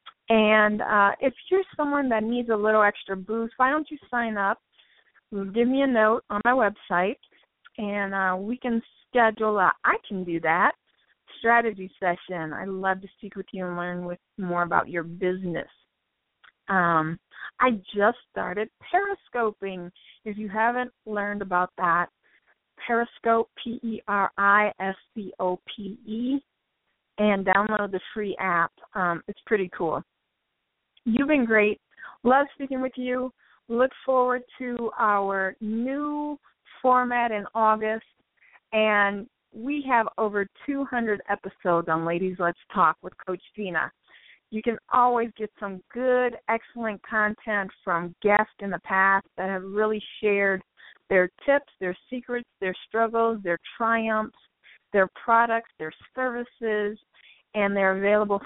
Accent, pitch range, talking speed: American, 190-235 Hz, 130 wpm